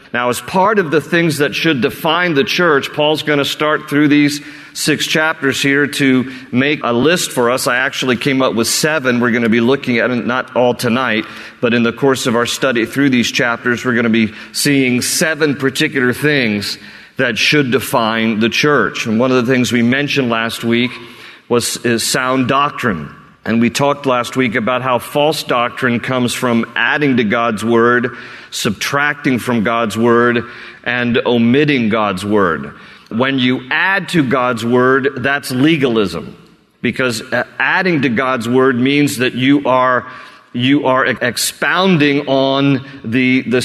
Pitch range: 125-145 Hz